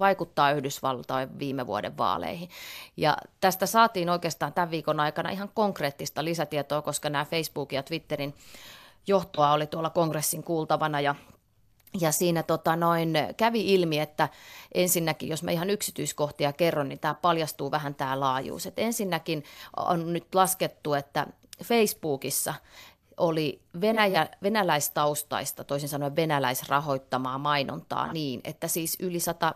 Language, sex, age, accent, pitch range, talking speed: Finnish, female, 30-49, native, 145-175 Hz, 120 wpm